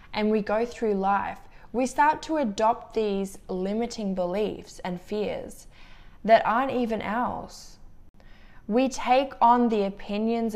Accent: Australian